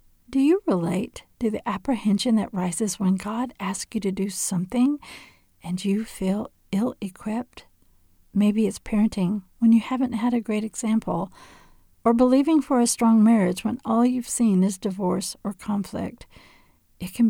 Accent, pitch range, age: American, 190-230 Hz, 50-69